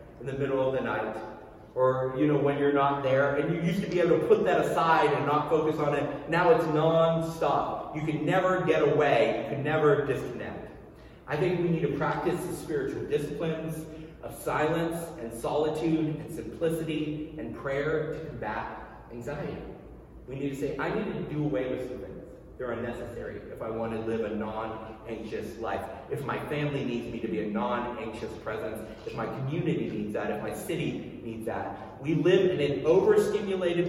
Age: 30-49